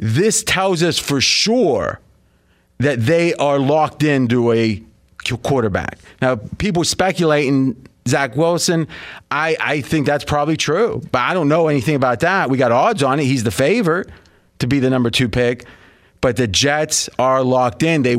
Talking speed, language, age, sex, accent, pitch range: 170 wpm, English, 30-49, male, American, 135-170 Hz